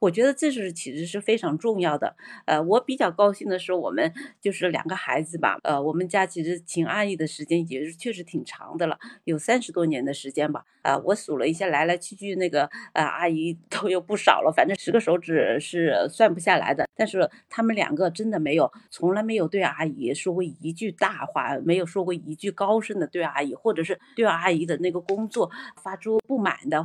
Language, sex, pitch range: Chinese, female, 165-215 Hz